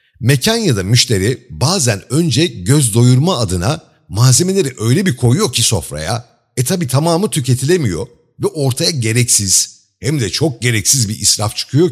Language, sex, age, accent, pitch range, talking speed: Turkish, male, 50-69, native, 105-145 Hz, 145 wpm